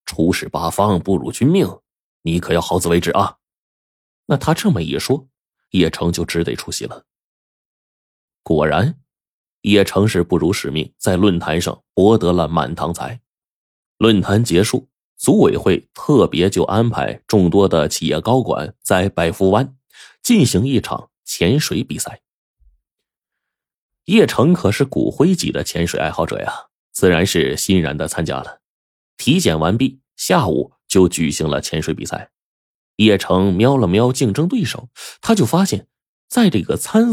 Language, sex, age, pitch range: Chinese, male, 20-39, 85-135 Hz